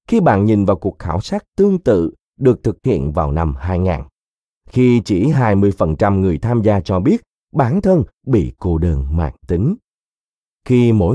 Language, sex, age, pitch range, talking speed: Vietnamese, male, 30-49, 90-130 Hz, 170 wpm